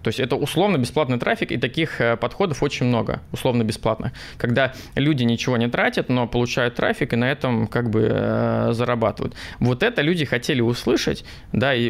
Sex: male